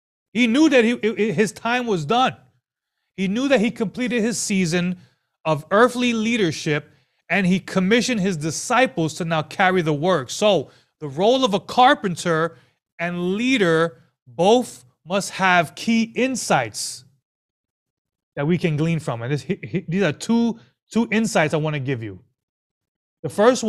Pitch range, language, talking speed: 150-220 Hz, English, 145 wpm